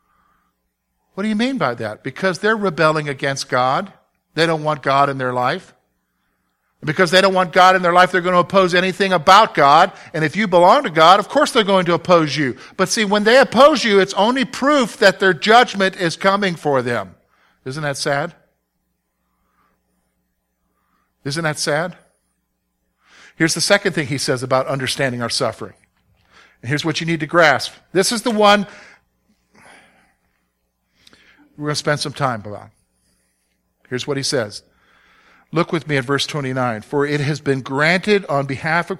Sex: male